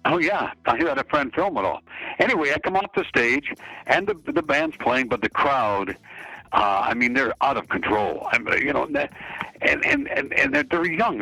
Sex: male